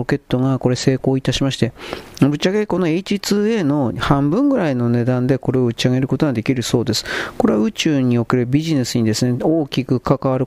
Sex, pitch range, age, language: male, 125-160 Hz, 40-59, Japanese